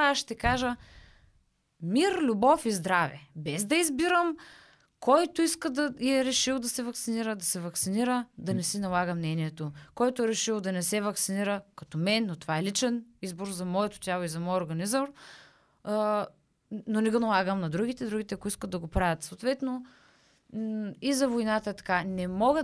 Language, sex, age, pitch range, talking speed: Bulgarian, female, 20-39, 185-245 Hz, 180 wpm